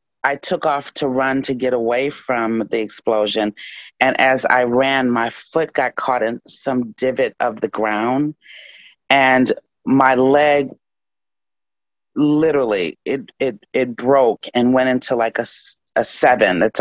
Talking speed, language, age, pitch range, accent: 145 wpm, English, 40-59, 120-145 Hz, American